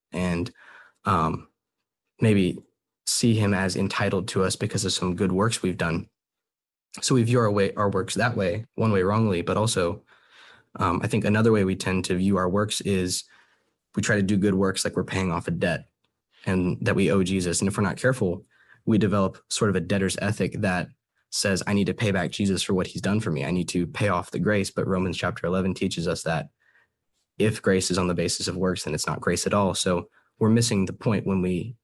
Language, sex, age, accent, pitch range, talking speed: English, male, 10-29, American, 95-105 Hz, 225 wpm